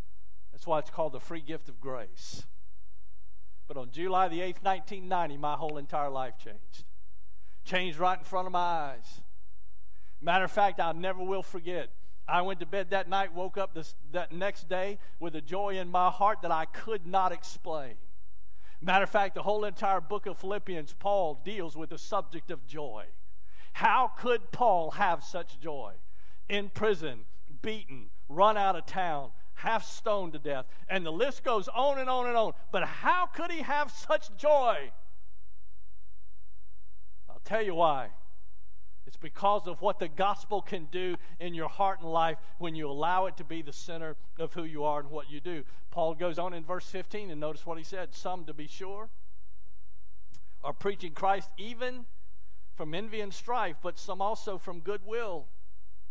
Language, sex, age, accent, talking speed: English, male, 50-69, American, 180 wpm